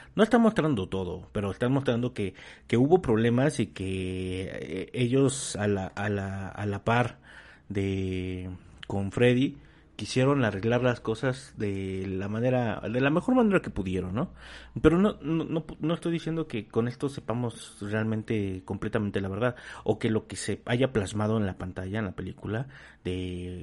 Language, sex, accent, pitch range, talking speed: Spanish, male, Mexican, 95-125 Hz, 170 wpm